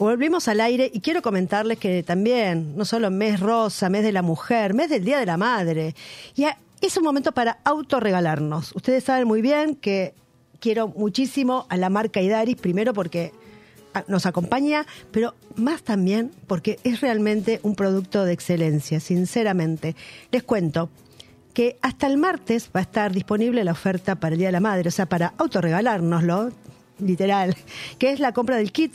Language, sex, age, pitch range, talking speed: Spanish, female, 40-59, 180-240 Hz, 170 wpm